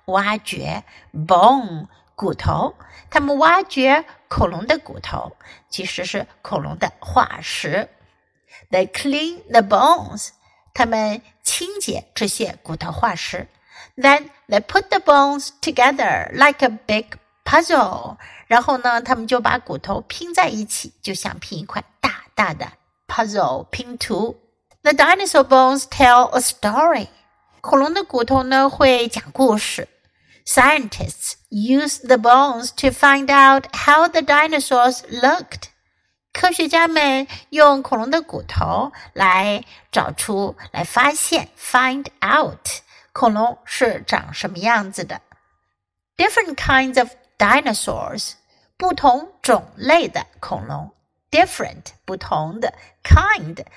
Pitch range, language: 225-300 Hz, Chinese